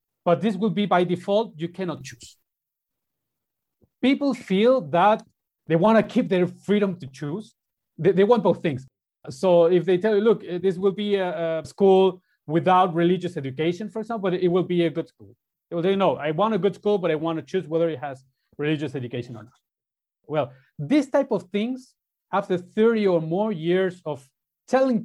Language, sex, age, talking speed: English, male, 30-49, 195 wpm